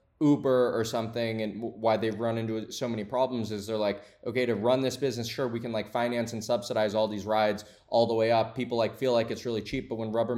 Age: 20-39